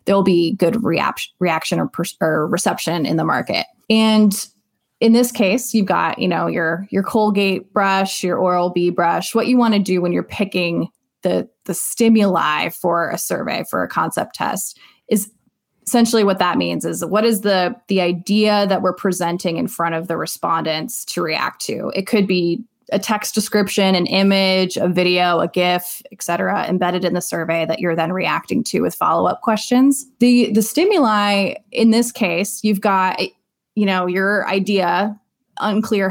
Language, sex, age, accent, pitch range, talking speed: English, female, 20-39, American, 170-215 Hz, 175 wpm